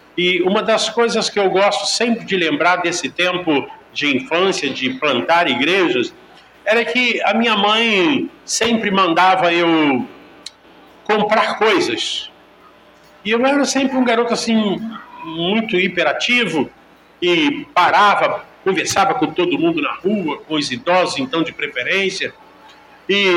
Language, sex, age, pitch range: Portuguese, male, 50-69, 165-225 Hz